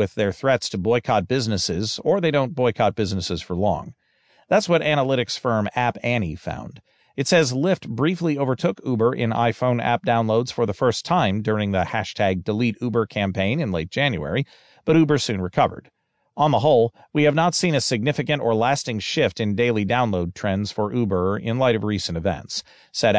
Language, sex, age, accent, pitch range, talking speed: English, male, 40-59, American, 105-140 Hz, 185 wpm